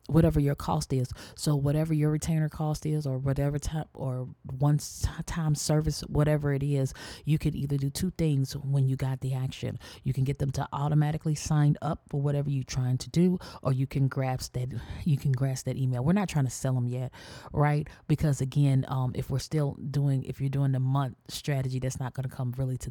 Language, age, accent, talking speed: English, 30-49, American, 215 wpm